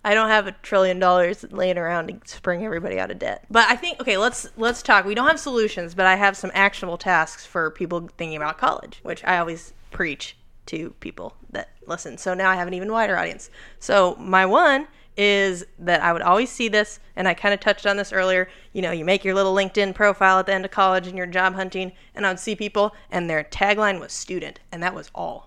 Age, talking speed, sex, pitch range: 20-39, 235 wpm, female, 180-215 Hz